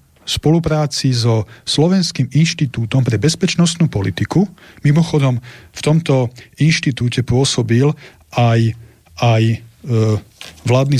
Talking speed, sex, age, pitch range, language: 85 wpm, male, 40-59, 115-155 Hz, Slovak